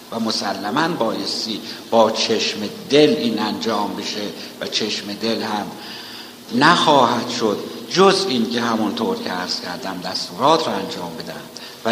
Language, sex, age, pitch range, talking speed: Persian, male, 60-79, 110-135 Hz, 135 wpm